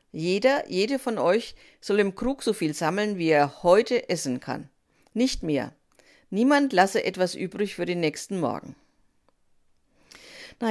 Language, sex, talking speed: German, female, 145 wpm